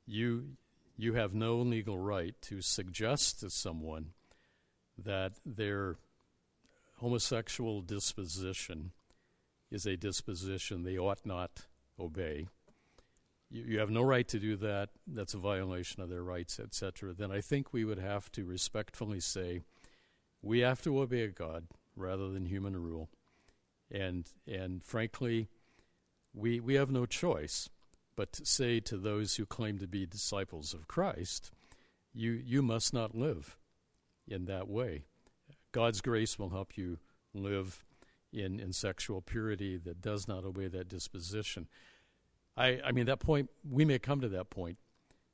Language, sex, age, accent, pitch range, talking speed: English, male, 60-79, American, 90-115 Hz, 145 wpm